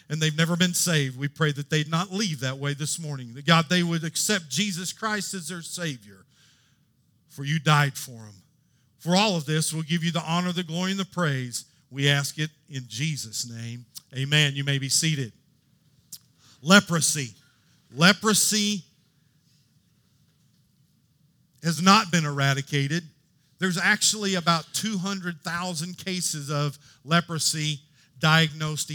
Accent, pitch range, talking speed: American, 140-165 Hz, 145 wpm